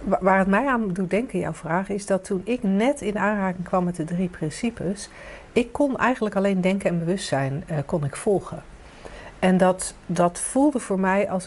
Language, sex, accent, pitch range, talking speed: Dutch, female, Dutch, 160-195 Hz, 200 wpm